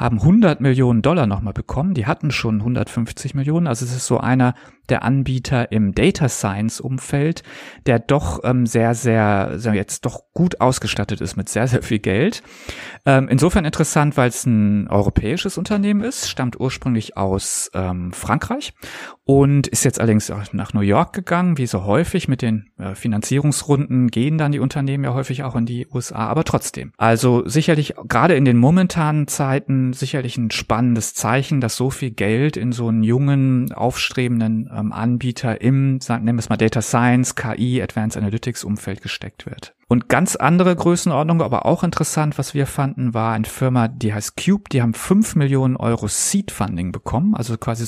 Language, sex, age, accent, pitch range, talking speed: German, male, 40-59, German, 115-140 Hz, 170 wpm